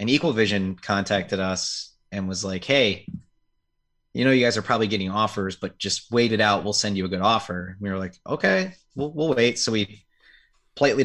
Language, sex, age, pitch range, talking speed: English, male, 30-49, 95-110 Hz, 210 wpm